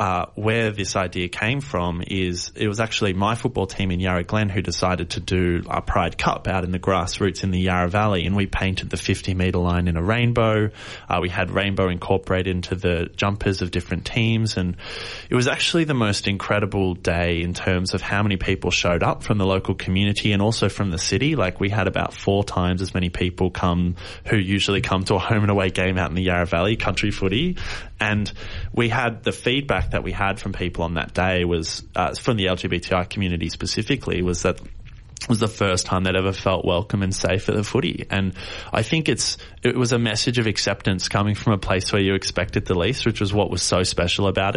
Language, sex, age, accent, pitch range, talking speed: English, male, 20-39, Australian, 90-105 Hz, 220 wpm